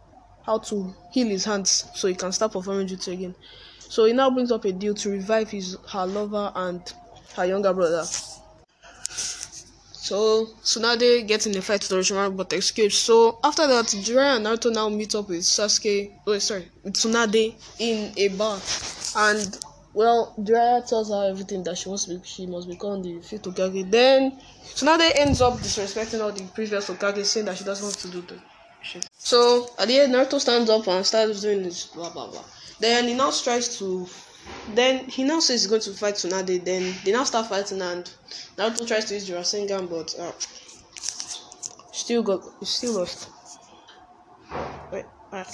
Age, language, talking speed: 10-29, English, 180 wpm